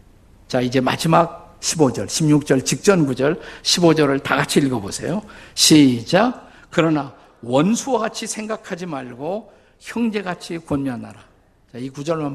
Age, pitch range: 50-69, 115-155 Hz